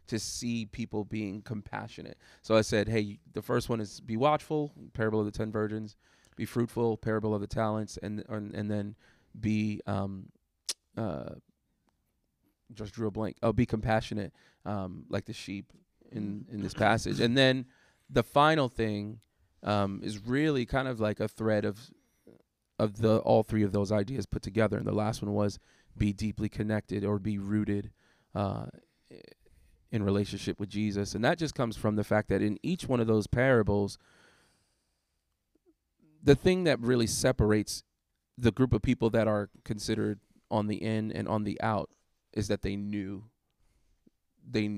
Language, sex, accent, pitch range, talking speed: English, male, American, 100-110 Hz, 170 wpm